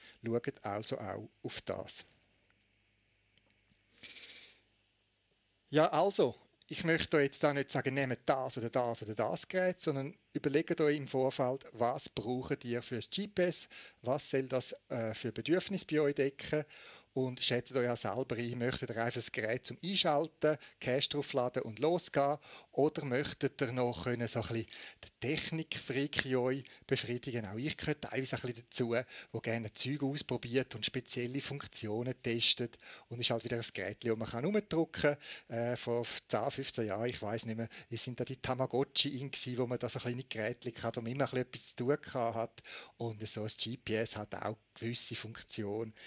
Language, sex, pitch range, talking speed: German, male, 115-145 Hz, 170 wpm